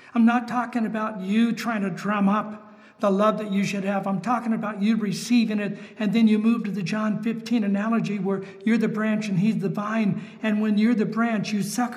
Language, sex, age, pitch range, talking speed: English, male, 50-69, 200-225 Hz, 225 wpm